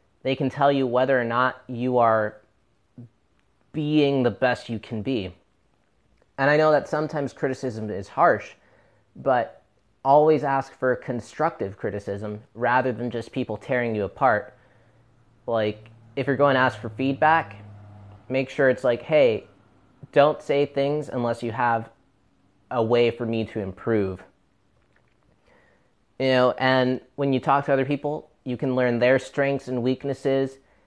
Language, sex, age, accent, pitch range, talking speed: English, male, 20-39, American, 115-140 Hz, 150 wpm